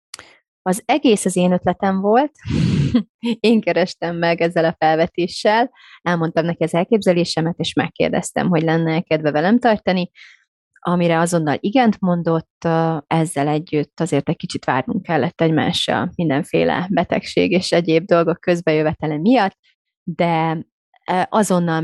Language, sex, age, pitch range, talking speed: Hungarian, female, 30-49, 160-195 Hz, 120 wpm